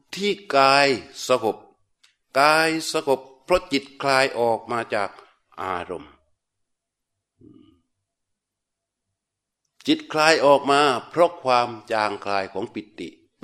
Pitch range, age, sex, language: 120-175 Hz, 60-79, male, Thai